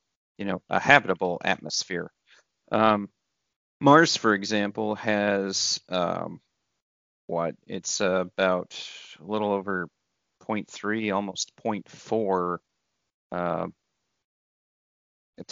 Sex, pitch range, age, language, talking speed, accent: male, 95-110 Hz, 30-49, English, 80 wpm, American